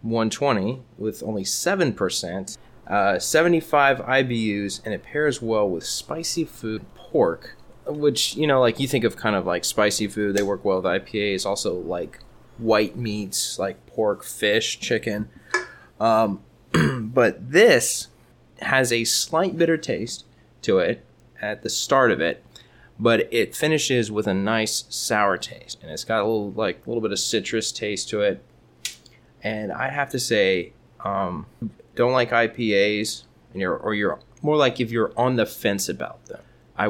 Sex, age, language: male, 20-39, English